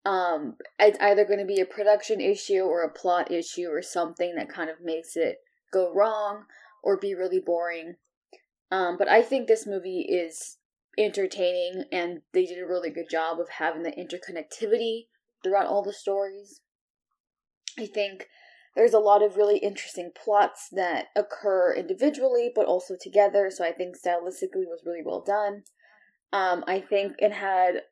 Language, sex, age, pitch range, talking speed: English, female, 10-29, 175-210 Hz, 165 wpm